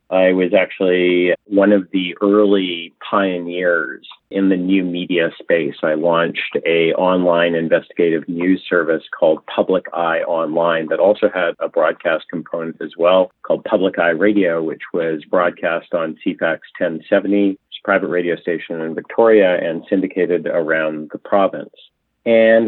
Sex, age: male, 40-59